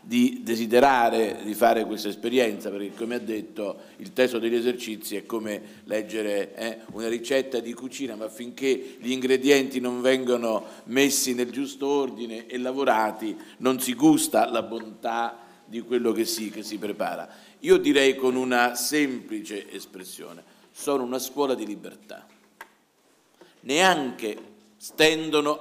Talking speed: 135 wpm